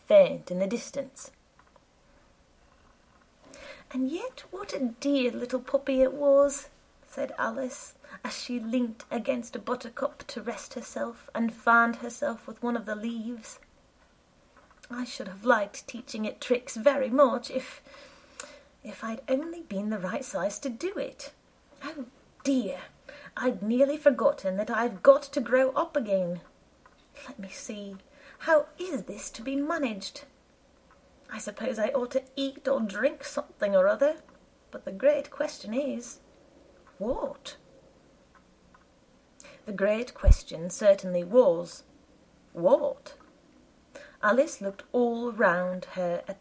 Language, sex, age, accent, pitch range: Korean, female, 30-49, British, 220-285 Hz